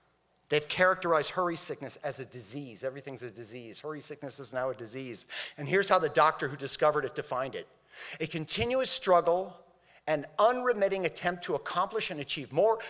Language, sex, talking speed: English, male, 170 wpm